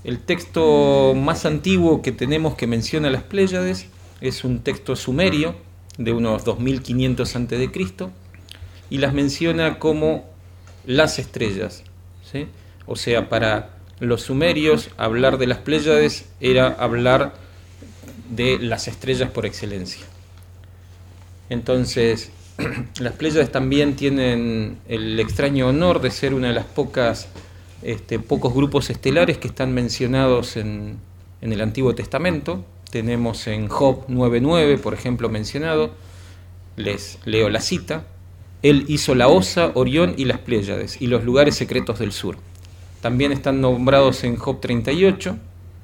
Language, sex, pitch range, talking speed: Spanish, male, 95-135 Hz, 125 wpm